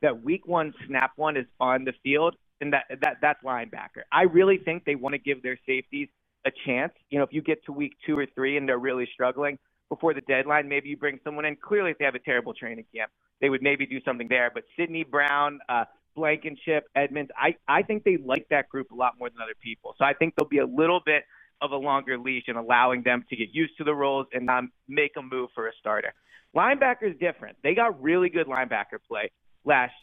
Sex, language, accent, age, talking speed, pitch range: male, English, American, 30-49, 235 wpm, 130-160 Hz